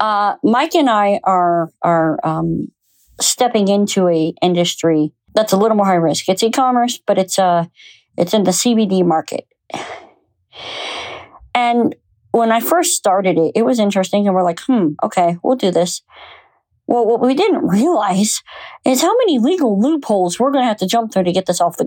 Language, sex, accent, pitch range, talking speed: English, female, American, 180-230 Hz, 180 wpm